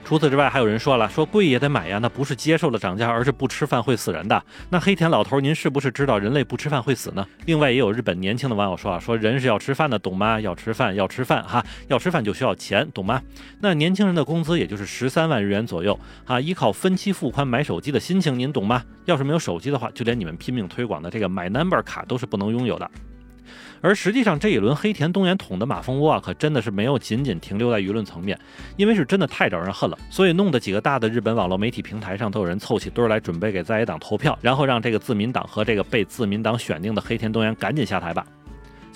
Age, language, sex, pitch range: 30-49, Chinese, male, 110-150 Hz